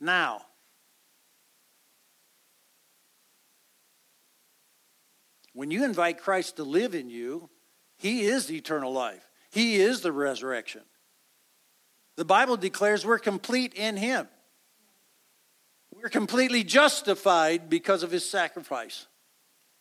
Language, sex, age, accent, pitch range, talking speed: English, male, 60-79, American, 165-245 Hz, 95 wpm